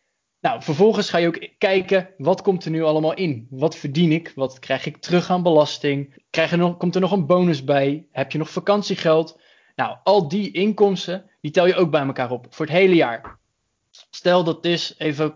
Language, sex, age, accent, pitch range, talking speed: Dutch, male, 20-39, Dutch, 150-180 Hz, 200 wpm